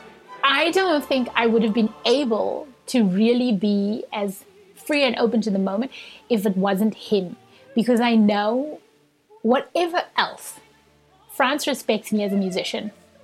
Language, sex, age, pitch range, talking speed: English, female, 30-49, 210-265 Hz, 150 wpm